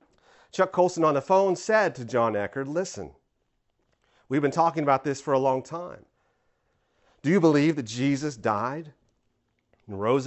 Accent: American